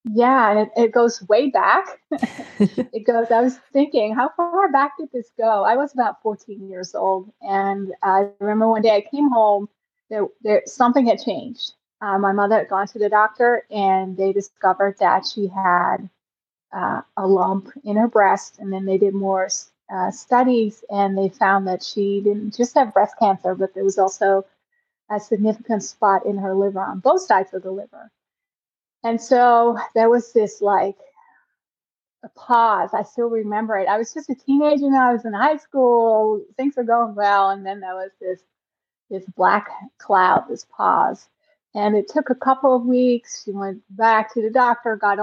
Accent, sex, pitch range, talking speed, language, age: American, female, 195-240 Hz, 185 wpm, English, 30-49